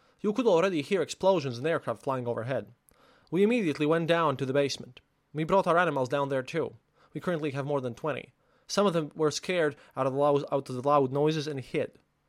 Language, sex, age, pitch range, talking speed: English, male, 20-39, 135-165 Hz, 215 wpm